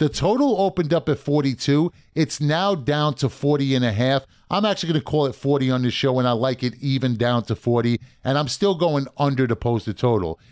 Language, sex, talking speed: English, male, 230 wpm